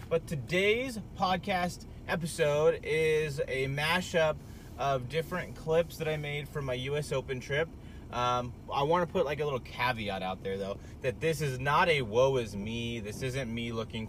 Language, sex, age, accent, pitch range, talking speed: English, male, 30-49, American, 110-145 Hz, 175 wpm